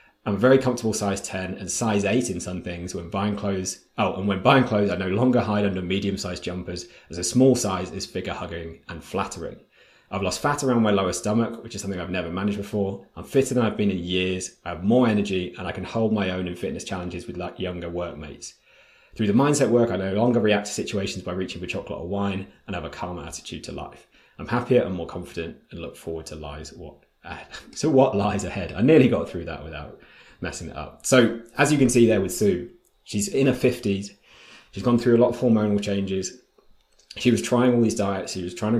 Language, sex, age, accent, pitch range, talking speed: English, male, 20-39, British, 90-115 Hz, 230 wpm